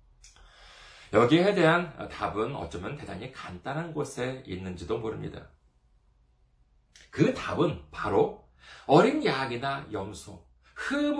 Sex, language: male, Korean